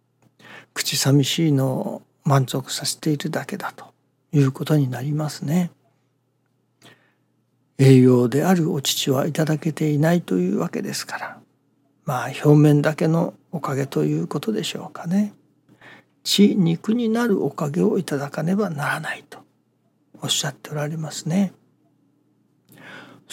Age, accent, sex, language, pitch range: 60-79, native, male, Japanese, 135-180 Hz